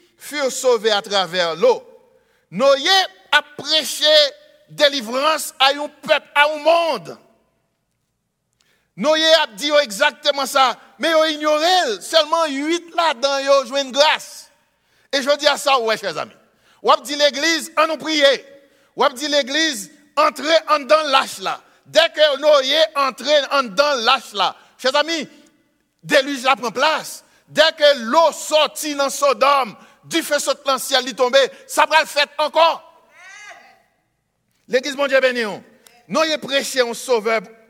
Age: 60-79